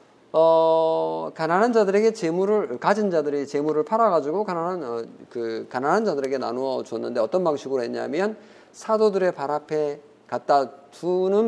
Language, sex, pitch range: Korean, male, 120-190 Hz